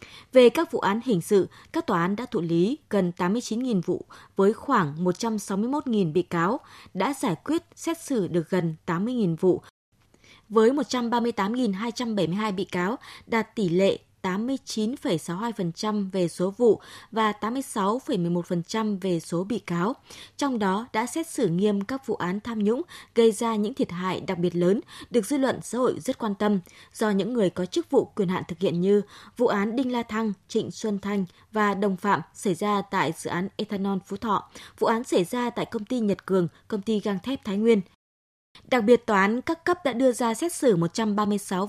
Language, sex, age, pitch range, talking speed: Vietnamese, female, 20-39, 185-240 Hz, 185 wpm